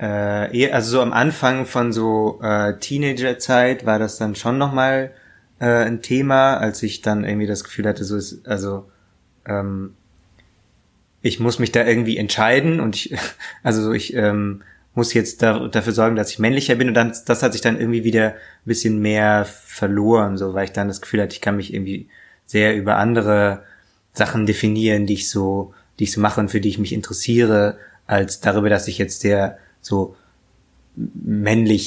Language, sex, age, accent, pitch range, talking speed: German, male, 20-39, German, 100-115 Hz, 175 wpm